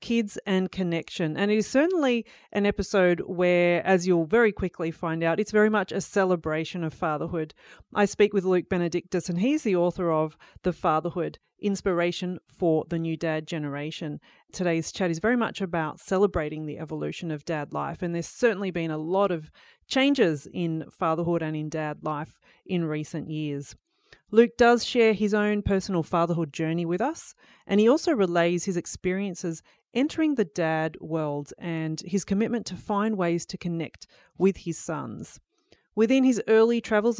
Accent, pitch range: Australian, 165-210 Hz